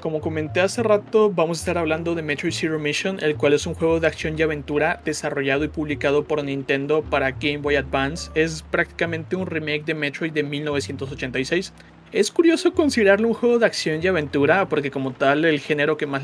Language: Spanish